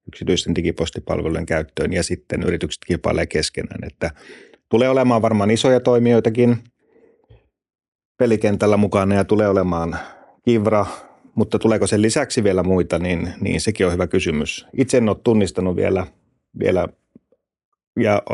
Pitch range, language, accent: 95-115 Hz, Finnish, native